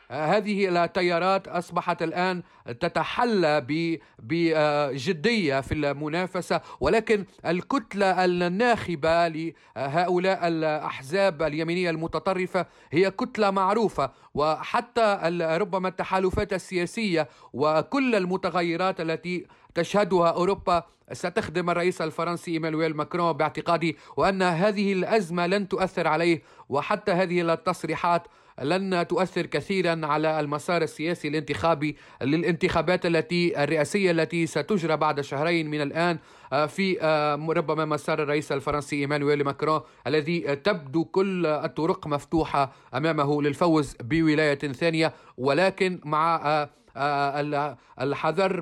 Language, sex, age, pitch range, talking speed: Arabic, male, 40-59, 155-180 Hz, 95 wpm